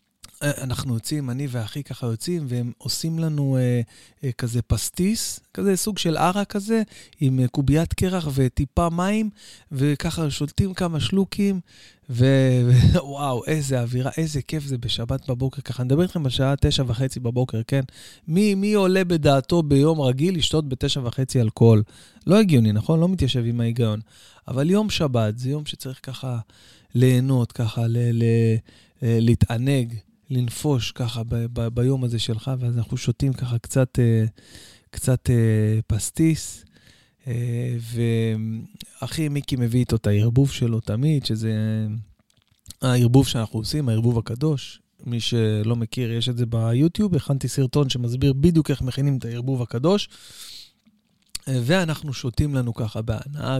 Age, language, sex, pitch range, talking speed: 20-39, Hebrew, male, 115-145 Hz, 140 wpm